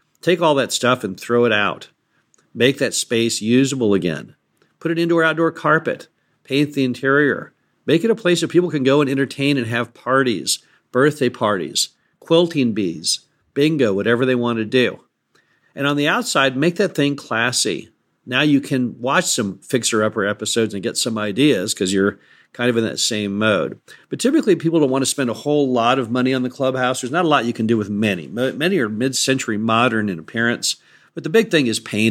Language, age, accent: English, 50-69, American